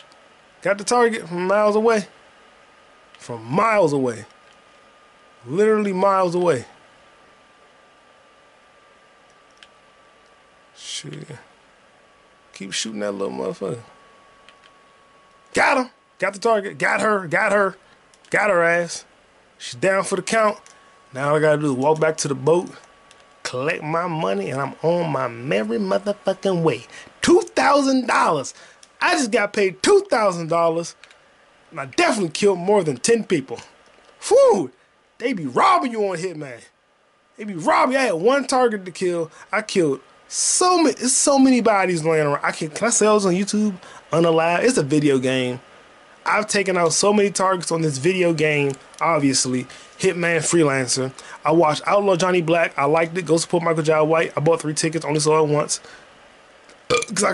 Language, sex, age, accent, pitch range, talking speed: English, male, 20-39, American, 155-210 Hz, 155 wpm